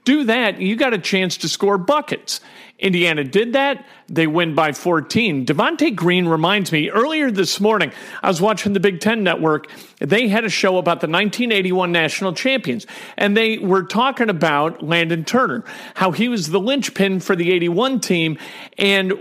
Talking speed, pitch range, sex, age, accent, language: 175 wpm, 165-220 Hz, male, 40-59, American, English